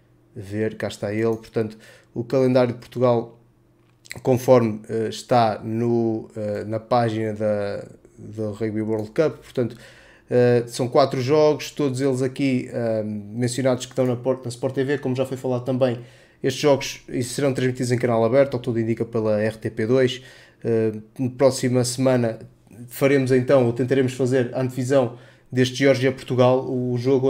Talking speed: 155 wpm